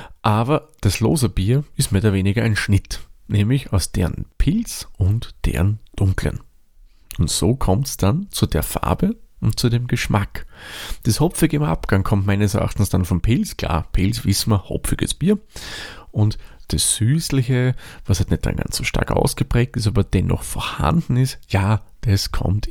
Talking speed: 170 wpm